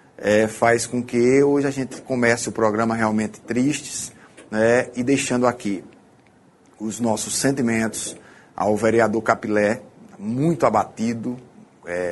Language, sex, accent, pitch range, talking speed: Portuguese, male, Brazilian, 110-125 Hz, 115 wpm